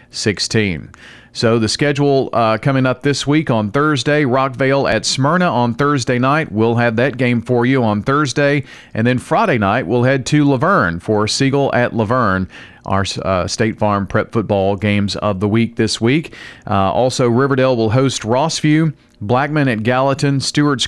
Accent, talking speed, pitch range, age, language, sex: American, 170 wpm, 110-140 Hz, 40-59, English, male